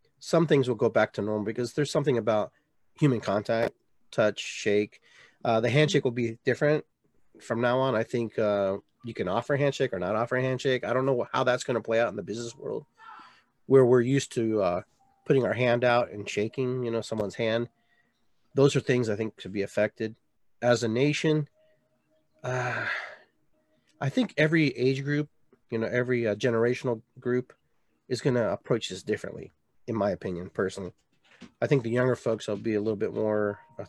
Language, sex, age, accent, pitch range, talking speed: English, male, 30-49, American, 115-145 Hz, 195 wpm